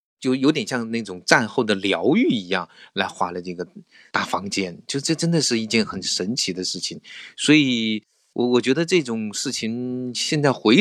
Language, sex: Chinese, male